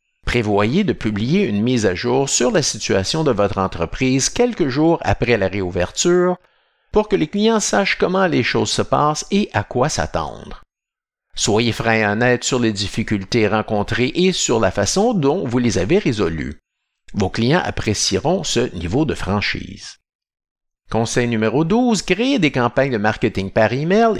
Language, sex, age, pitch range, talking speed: French, male, 50-69, 105-160 Hz, 165 wpm